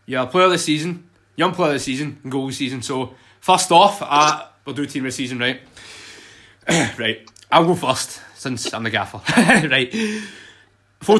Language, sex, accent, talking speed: English, male, British, 175 wpm